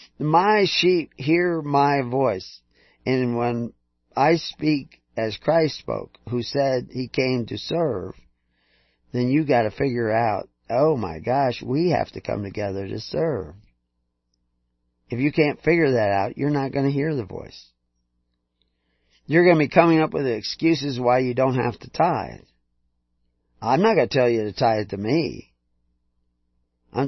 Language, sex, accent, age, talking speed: English, male, American, 40-59, 165 wpm